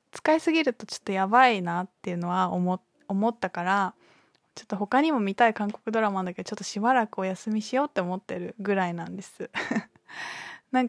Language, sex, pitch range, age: Japanese, female, 190-255 Hz, 20-39